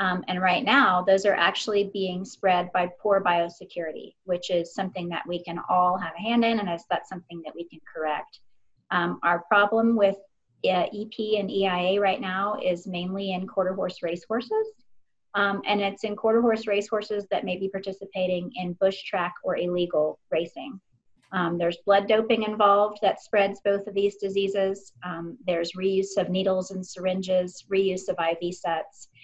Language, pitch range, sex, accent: English, 180-215 Hz, female, American